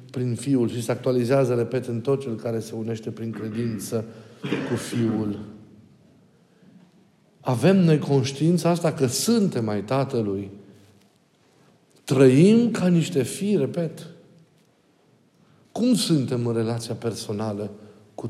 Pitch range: 115-160 Hz